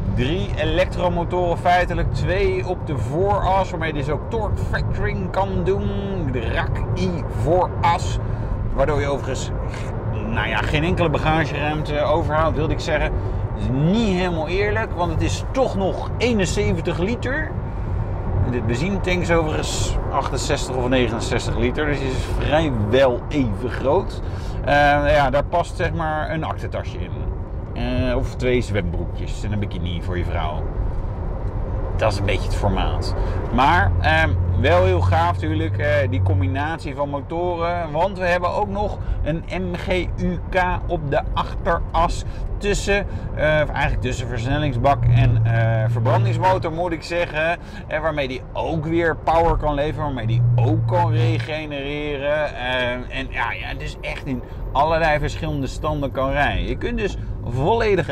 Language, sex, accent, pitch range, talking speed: Dutch, male, Dutch, 100-145 Hz, 150 wpm